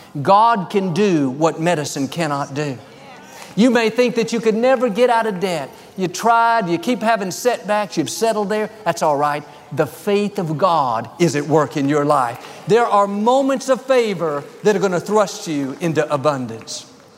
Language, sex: English, male